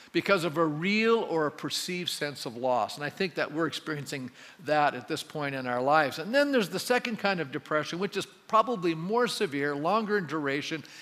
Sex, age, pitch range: male, 50-69, 150-190 Hz